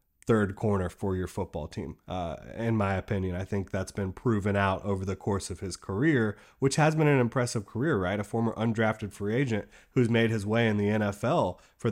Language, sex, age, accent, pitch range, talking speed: English, male, 30-49, American, 100-115 Hz, 210 wpm